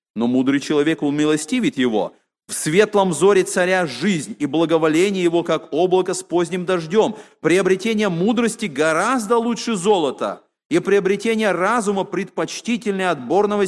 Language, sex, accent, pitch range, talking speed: Russian, male, native, 150-210 Hz, 125 wpm